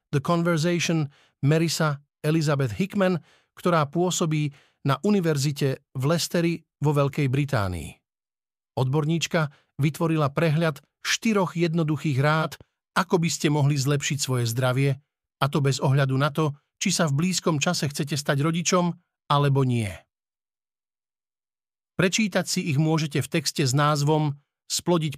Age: 50-69